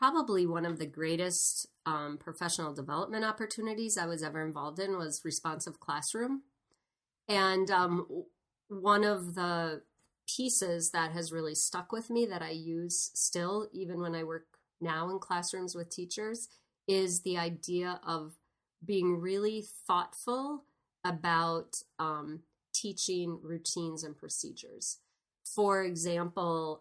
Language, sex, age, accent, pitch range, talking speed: English, female, 30-49, American, 165-205 Hz, 130 wpm